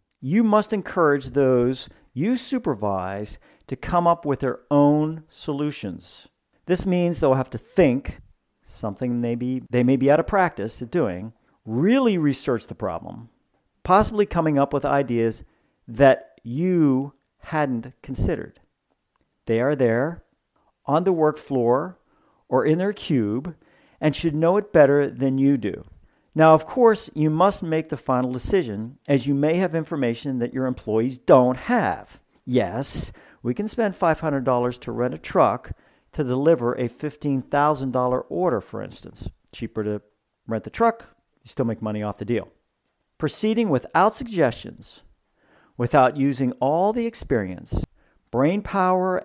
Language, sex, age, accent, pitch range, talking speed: English, male, 50-69, American, 125-170 Hz, 145 wpm